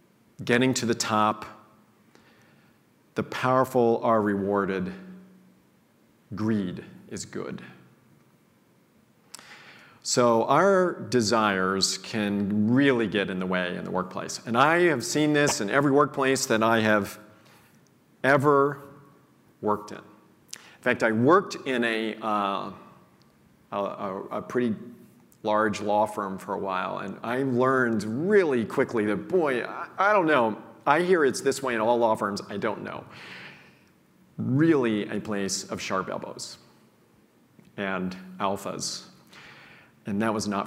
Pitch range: 105-140 Hz